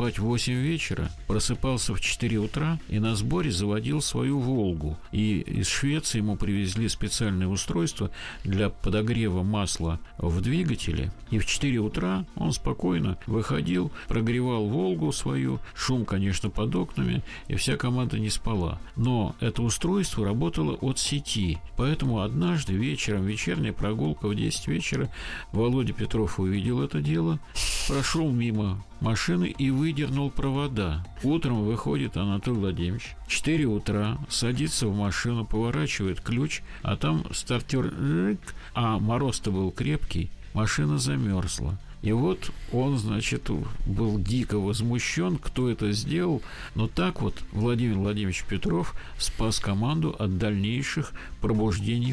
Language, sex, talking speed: Russian, male, 125 wpm